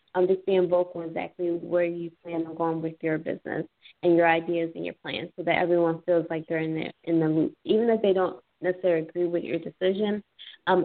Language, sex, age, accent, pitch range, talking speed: English, female, 20-39, American, 165-185 Hz, 215 wpm